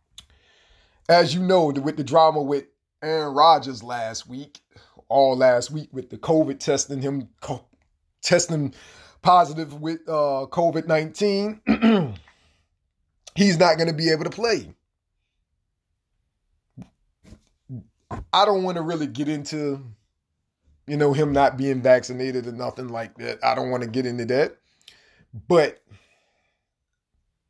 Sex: male